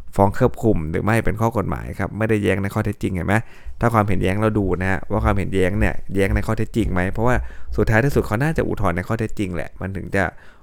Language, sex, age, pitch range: Thai, male, 20-39, 90-110 Hz